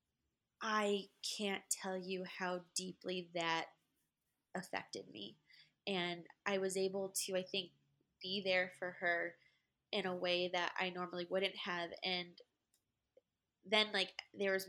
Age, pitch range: 20-39, 175-195 Hz